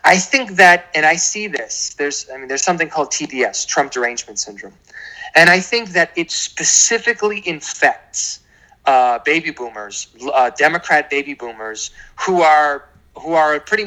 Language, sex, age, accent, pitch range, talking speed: English, male, 30-49, American, 130-190 Hz, 155 wpm